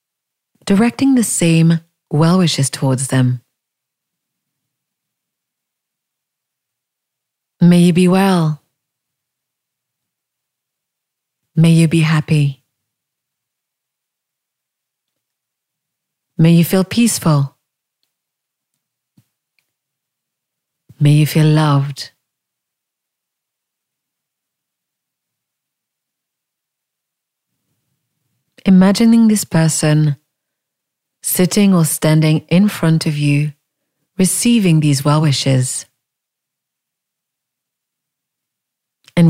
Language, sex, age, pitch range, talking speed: English, female, 30-49, 140-170 Hz, 55 wpm